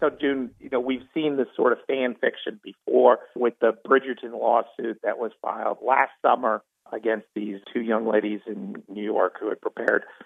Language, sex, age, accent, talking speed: English, male, 50-69, American, 185 wpm